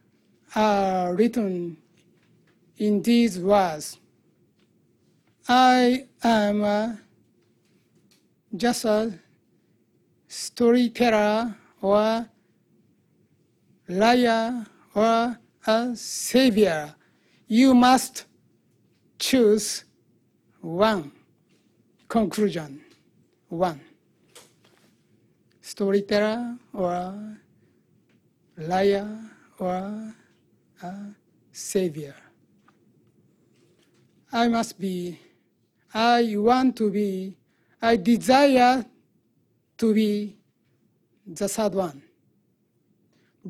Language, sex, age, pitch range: Chinese, male, 60-79, 195-260 Hz